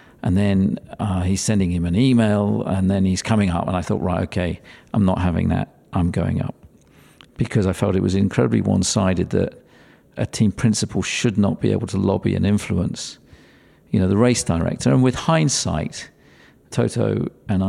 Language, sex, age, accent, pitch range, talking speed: English, male, 50-69, British, 95-110 Hz, 185 wpm